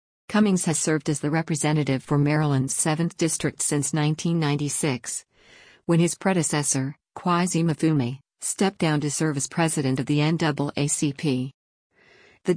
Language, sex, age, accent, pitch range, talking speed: English, female, 50-69, American, 145-170 Hz, 130 wpm